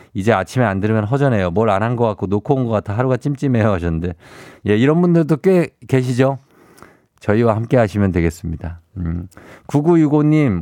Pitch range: 105-140 Hz